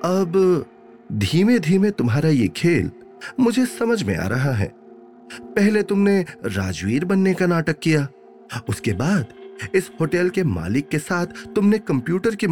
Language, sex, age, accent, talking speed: Hindi, male, 30-49, native, 145 wpm